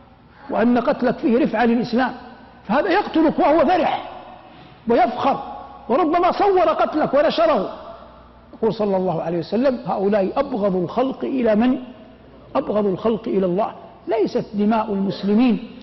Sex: male